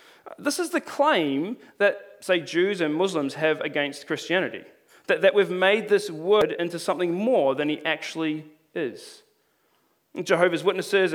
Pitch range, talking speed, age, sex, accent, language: 170-255 Hz, 140 wpm, 30-49, male, Australian, English